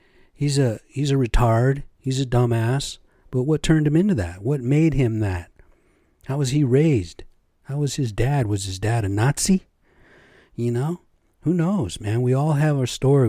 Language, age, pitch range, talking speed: English, 50-69, 105-140 Hz, 185 wpm